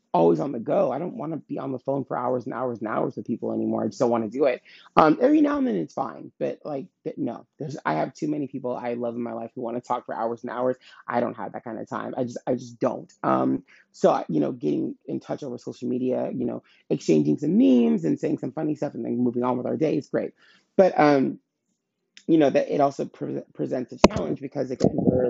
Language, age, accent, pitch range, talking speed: English, 30-49, American, 120-185 Hz, 270 wpm